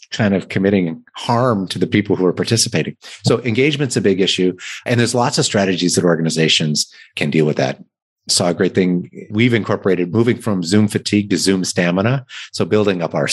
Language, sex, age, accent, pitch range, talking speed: English, male, 30-49, American, 90-110 Hz, 200 wpm